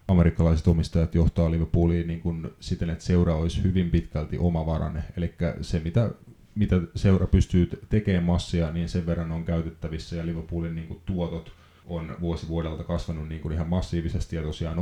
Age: 30-49